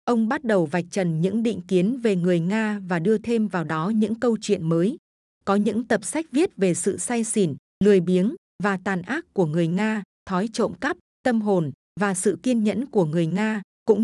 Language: Vietnamese